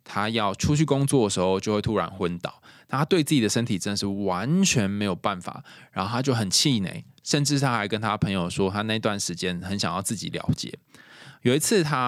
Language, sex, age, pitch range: Chinese, male, 20-39, 95-125 Hz